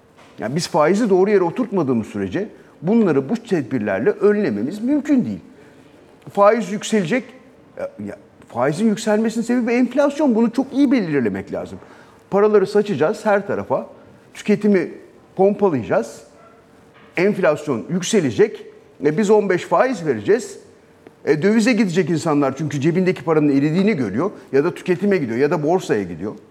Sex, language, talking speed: male, Turkish, 120 wpm